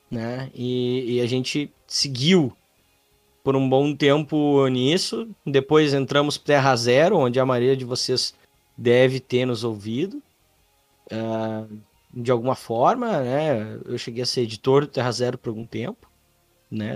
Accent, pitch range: Brazilian, 115-135 Hz